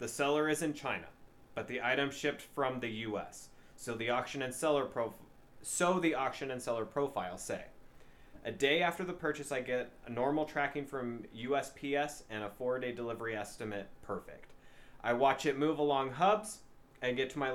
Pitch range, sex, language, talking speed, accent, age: 120-145 Hz, male, English, 185 wpm, American, 20-39